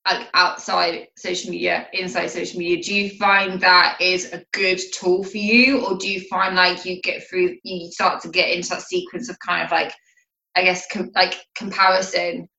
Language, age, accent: English, 20-39, British